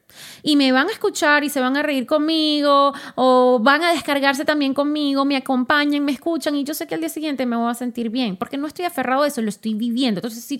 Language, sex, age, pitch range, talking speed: Spanish, female, 20-39, 220-305 Hz, 250 wpm